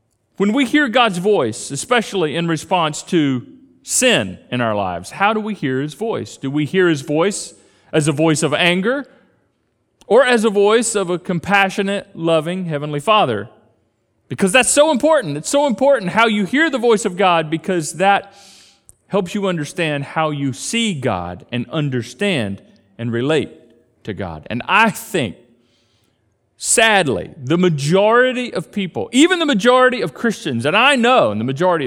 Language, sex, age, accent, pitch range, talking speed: English, male, 40-59, American, 140-215 Hz, 165 wpm